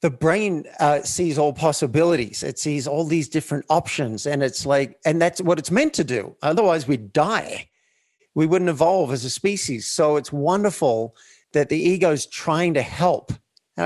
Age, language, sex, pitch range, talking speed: 50-69, English, male, 135-170 Hz, 180 wpm